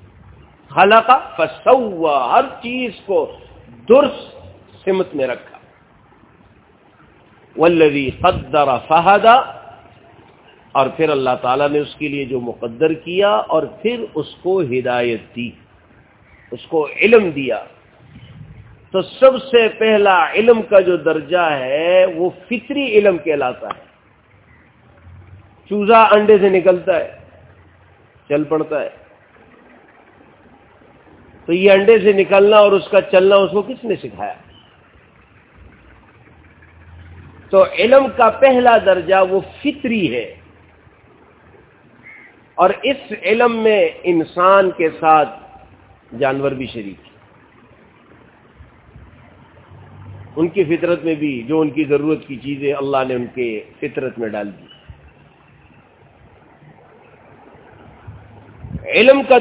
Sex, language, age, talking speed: male, Urdu, 50-69, 110 wpm